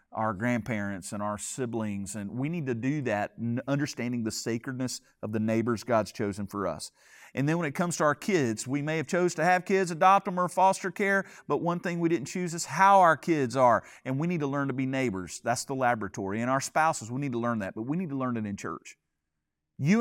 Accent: American